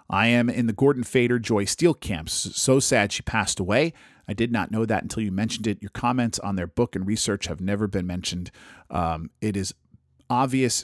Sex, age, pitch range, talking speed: male, 40-59, 100-140 Hz, 210 wpm